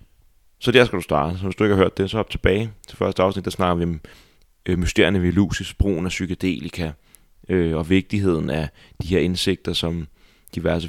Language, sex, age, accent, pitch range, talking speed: Danish, male, 30-49, native, 85-95 Hz, 205 wpm